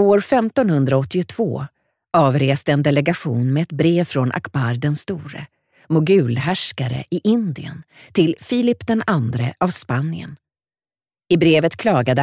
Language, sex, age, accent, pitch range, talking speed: Swedish, female, 40-59, native, 140-200 Hz, 120 wpm